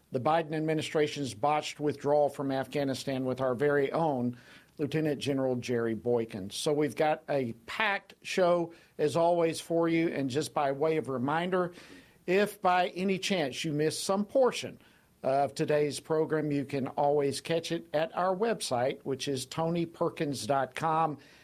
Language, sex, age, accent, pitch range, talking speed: English, male, 50-69, American, 140-180 Hz, 150 wpm